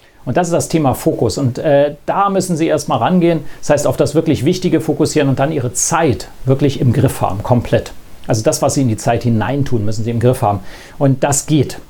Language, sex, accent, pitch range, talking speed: German, male, German, 135-170 Hz, 225 wpm